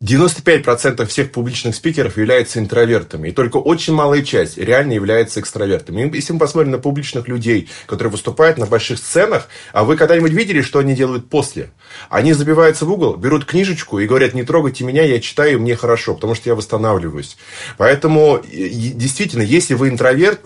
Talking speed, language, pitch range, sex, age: 170 wpm, Russian, 115-150 Hz, male, 20-39